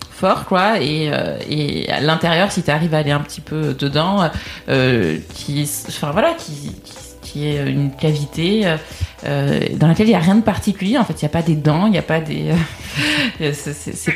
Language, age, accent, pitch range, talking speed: French, 20-39, French, 150-185 Hz, 210 wpm